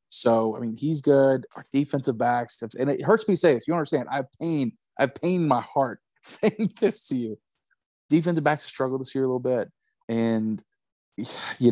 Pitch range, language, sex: 115-130 Hz, English, male